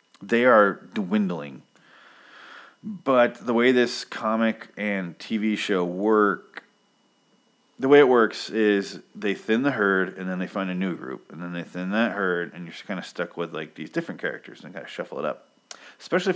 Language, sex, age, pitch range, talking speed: English, male, 30-49, 95-115 Hz, 200 wpm